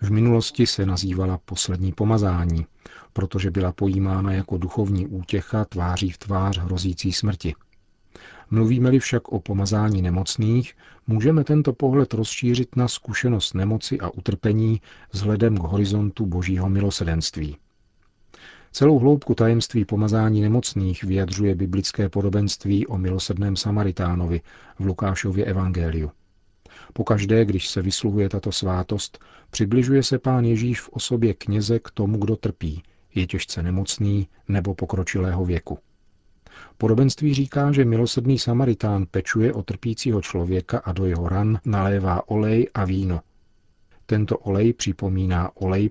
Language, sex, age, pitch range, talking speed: Czech, male, 40-59, 95-110 Hz, 125 wpm